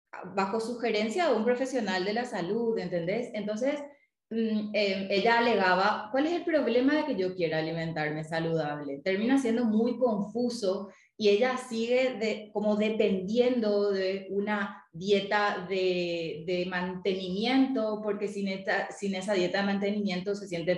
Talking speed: 145 wpm